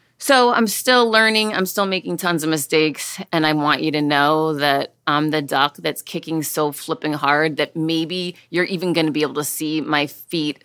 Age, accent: 30-49, American